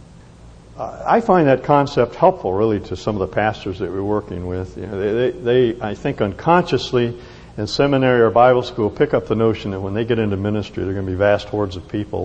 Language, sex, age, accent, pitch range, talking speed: English, male, 60-79, American, 90-130 Hz, 215 wpm